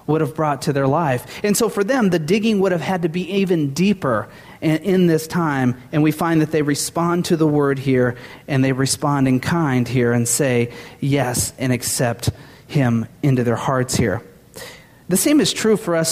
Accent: American